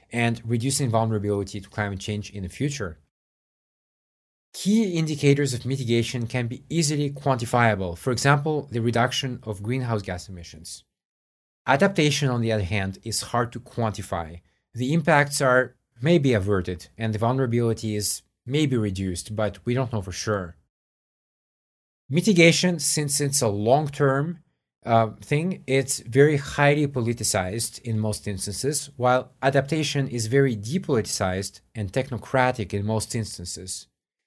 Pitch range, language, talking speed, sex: 105-135 Hz, English, 130 wpm, male